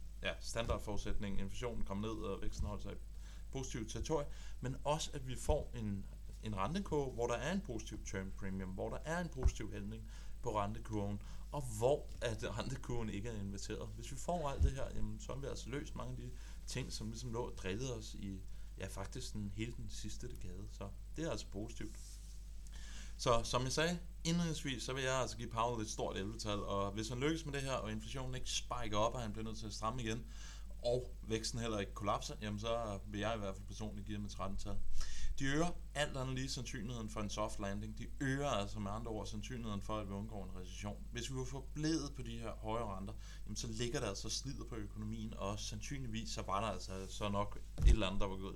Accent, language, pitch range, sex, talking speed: native, Danish, 100-120 Hz, male, 220 wpm